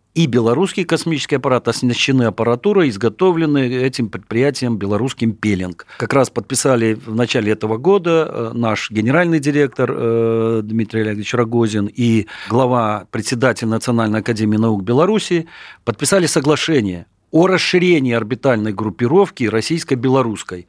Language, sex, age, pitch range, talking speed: Russian, male, 40-59, 110-145 Hz, 110 wpm